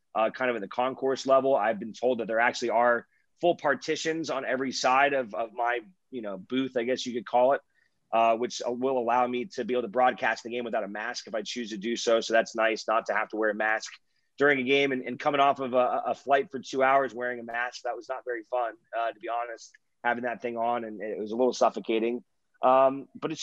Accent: American